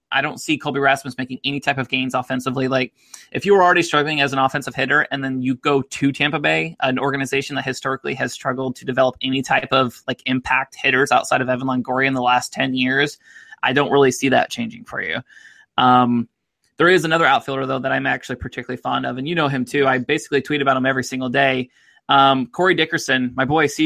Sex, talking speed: male, 225 wpm